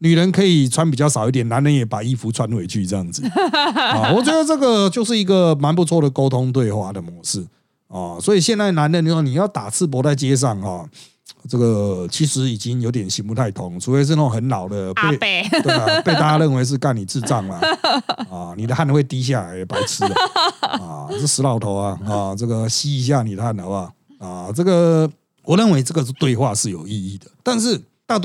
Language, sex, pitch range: Chinese, male, 115-175 Hz